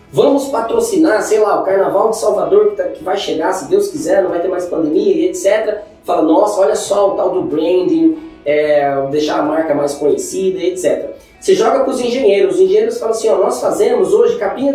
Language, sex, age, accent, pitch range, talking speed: Portuguese, male, 20-39, Brazilian, 225-360 Hz, 205 wpm